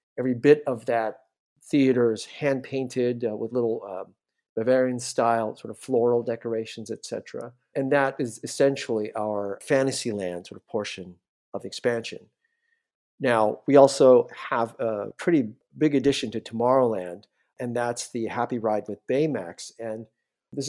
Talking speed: 140 wpm